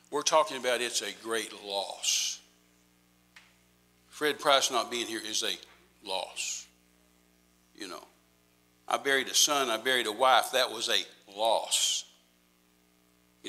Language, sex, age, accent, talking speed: English, male, 60-79, American, 135 wpm